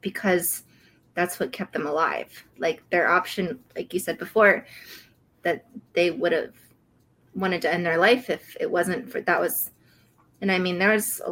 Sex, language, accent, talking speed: female, English, American, 180 wpm